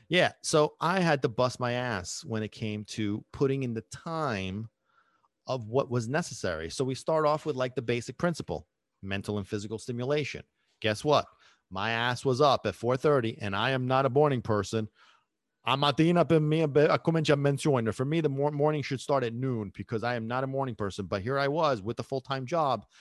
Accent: American